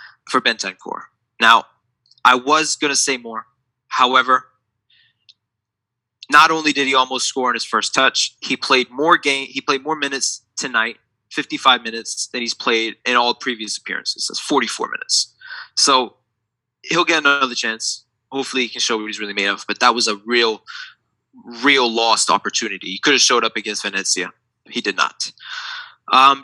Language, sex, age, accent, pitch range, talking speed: English, male, 20-39, American, 115-140 Hz, 165 wpm